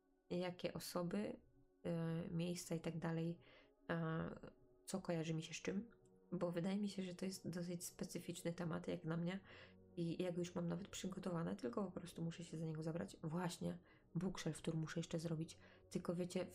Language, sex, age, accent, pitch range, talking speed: Polish, female, 20-39, native, 160-185 Hz, 175 wpm